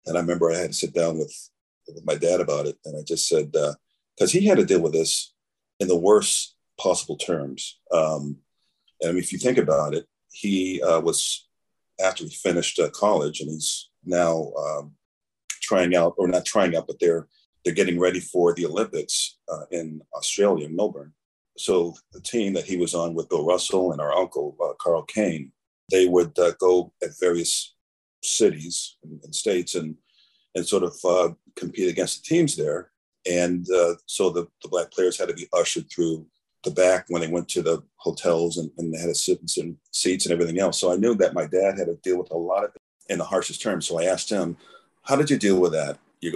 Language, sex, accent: English, male, American